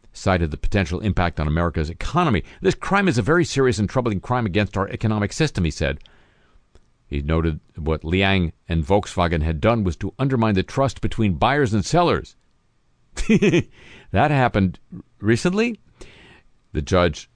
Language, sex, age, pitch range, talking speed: English, male, 60-79, 80-115 Hz, 150 wpm